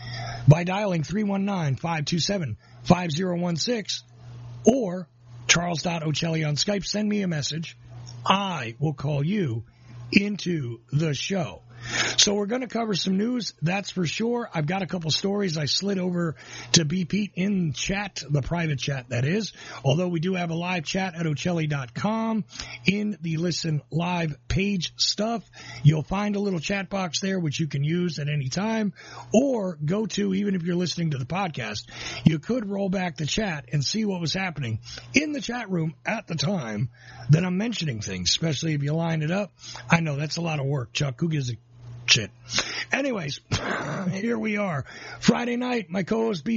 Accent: American